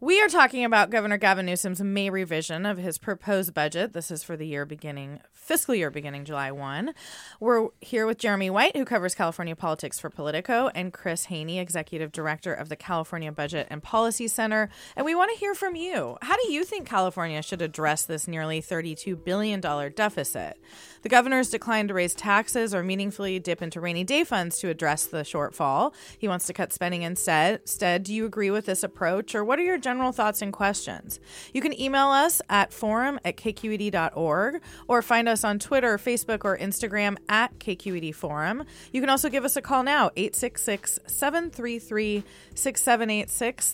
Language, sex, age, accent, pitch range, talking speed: English, female, 30-49, American, 170-235 Hz, 180 wpm